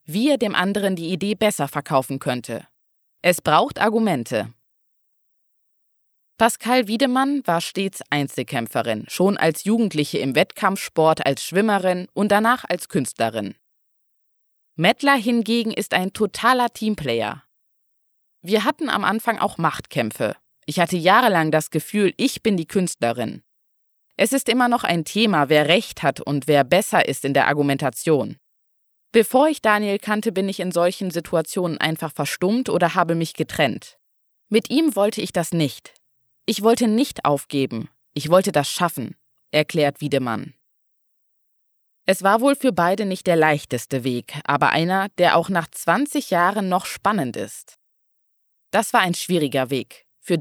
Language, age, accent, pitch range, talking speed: German, 20-39, German, 145-220 Hz, 145 wpm